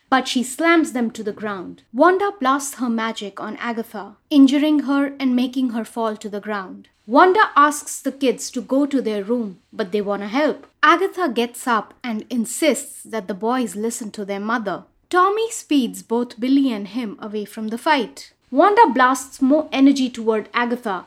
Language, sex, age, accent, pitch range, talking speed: English, female, 20-39, Indian, 220-295 Hz, 180 wpm